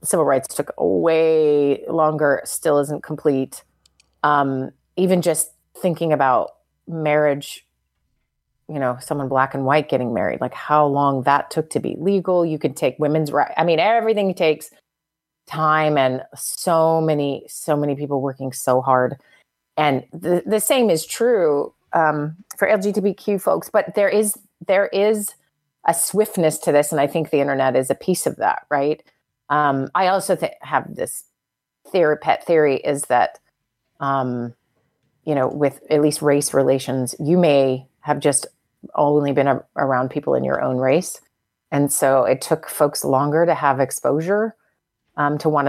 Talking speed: 155 wpm